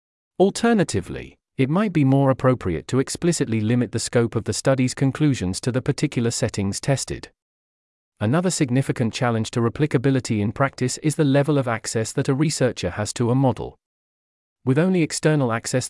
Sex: male